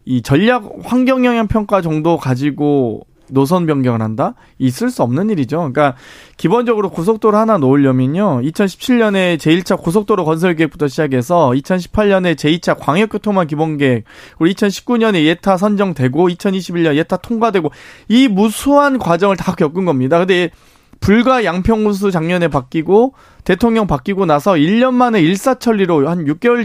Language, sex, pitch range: Korean, male, 150-215 Hz